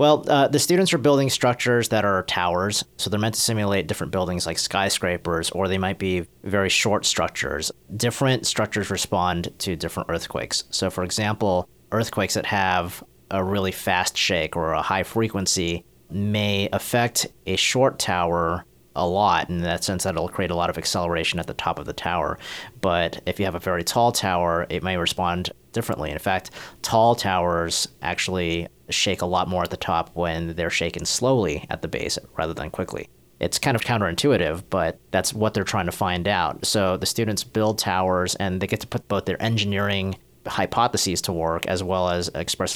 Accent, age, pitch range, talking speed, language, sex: American, 30-49, 85-105 Hz, 190 wpm, English, male